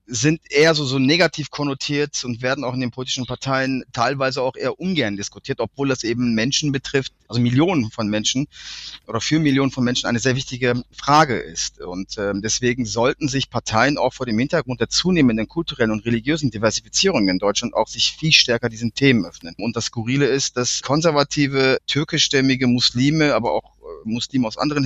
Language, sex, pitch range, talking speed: German, male, 110-135 Hz, 180 wpm